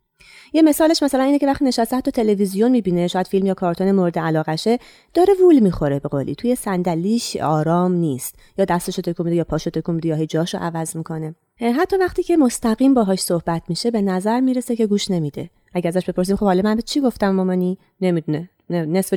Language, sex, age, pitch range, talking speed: Persian, female, 30-49, 160-225 Hz, 190 wpm